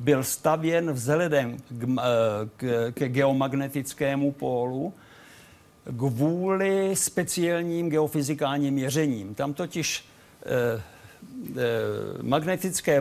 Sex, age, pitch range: male, 50-69, 135-160 Hz